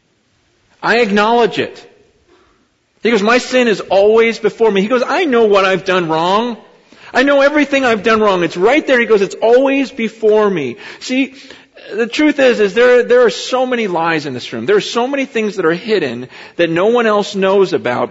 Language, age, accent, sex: Korean, 40-59, American, male